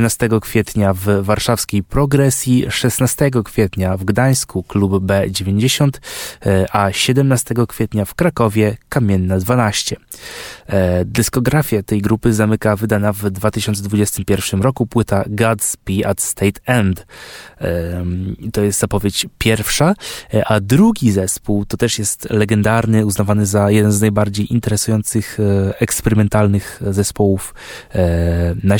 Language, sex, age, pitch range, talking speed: Polish, male, 20-39, 100-115 Hz, 105 wpm